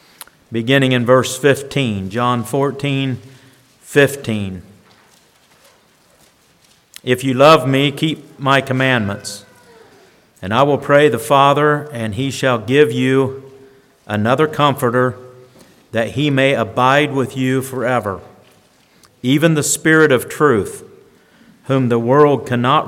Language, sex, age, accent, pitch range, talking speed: English, male, 50-69, American, 115-135 Hz, 115 wpm